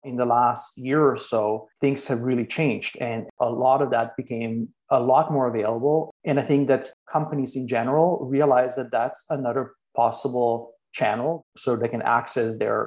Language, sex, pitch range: English, male, 130-155 Hz